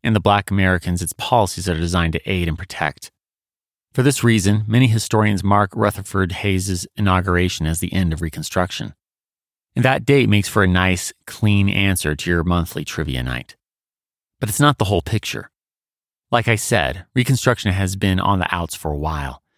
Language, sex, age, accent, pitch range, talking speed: English, male, 30-49, American, 85-110 Hz, 180 wpm